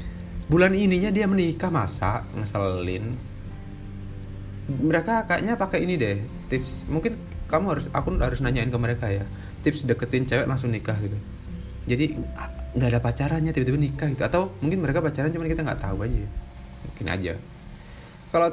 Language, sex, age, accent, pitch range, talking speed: Indonesian, male, 20-39, native, 95-125 Hz, 150 wpm